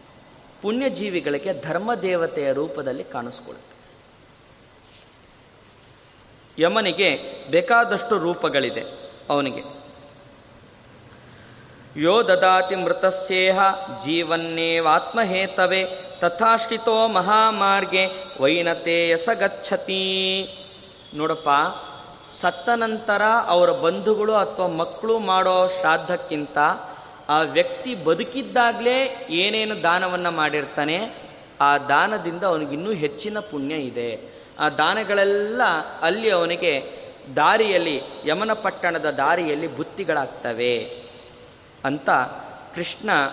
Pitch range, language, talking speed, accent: 150-195 Hz, Kannada, 65 wpm, native